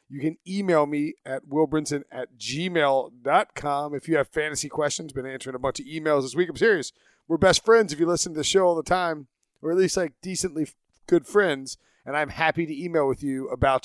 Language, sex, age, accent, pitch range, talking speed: English, male, 30-49, American, 135-175 Hz, 215 wpm